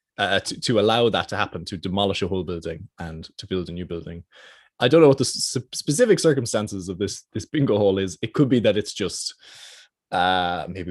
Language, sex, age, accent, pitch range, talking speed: English, male, 20-39, Irish, 85-115 Hz, 220 wpm